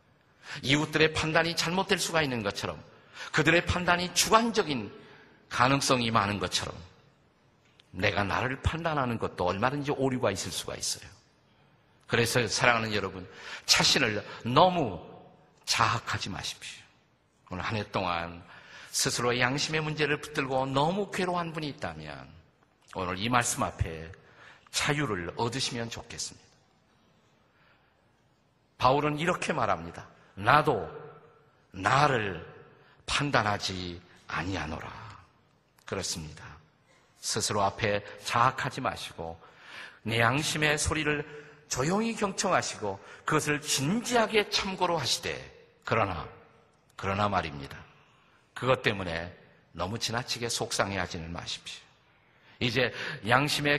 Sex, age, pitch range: male, 50-69, 105-155 Hz